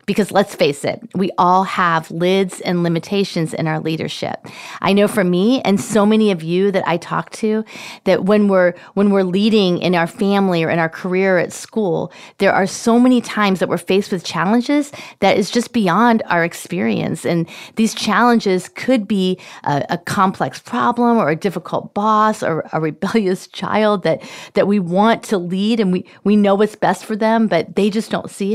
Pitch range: 180-215 Hz